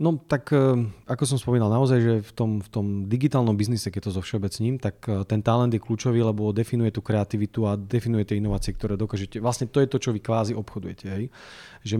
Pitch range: 105-120 Hz